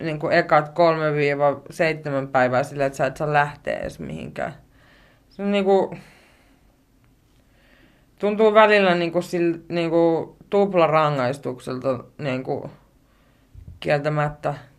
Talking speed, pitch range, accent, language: 95 wpm, 140-175 Hz, native, Finnish